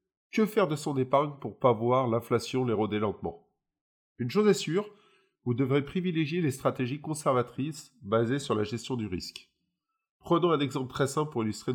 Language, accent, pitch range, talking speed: French, French, 115-160 Hz, 180 wpm